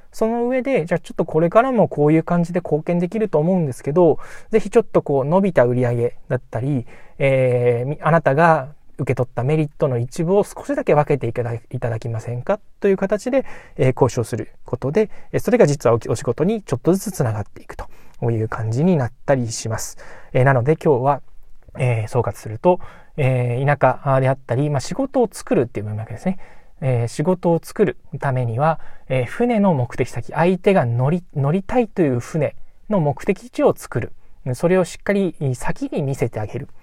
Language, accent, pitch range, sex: Japanese, native, 125-190 Hz, male